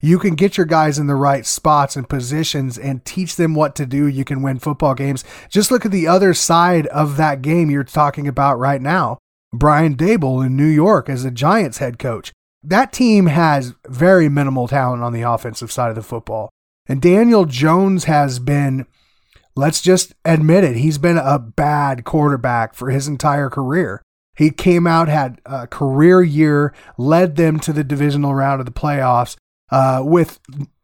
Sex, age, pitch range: male, 30-49, 130-165 Hz